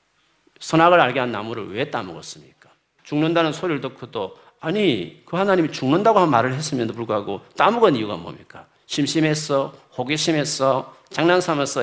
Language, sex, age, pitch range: Korean, male, 40-59, 120-170 Hz